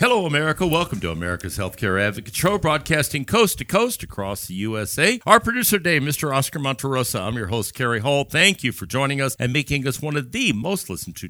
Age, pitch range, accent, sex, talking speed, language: 60-79, 110-155 Hz, American, male, 195 wpm, English